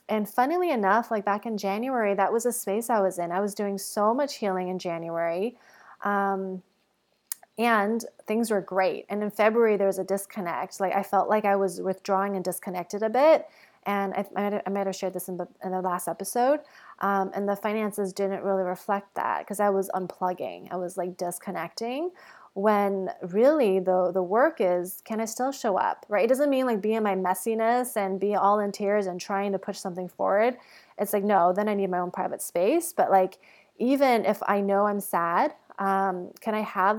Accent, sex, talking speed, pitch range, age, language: American, female, 205 wpm, 190-220 Hz, 20-39, English